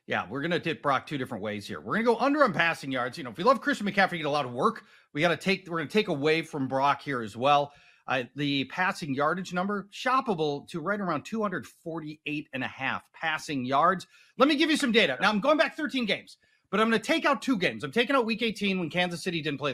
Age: 40-59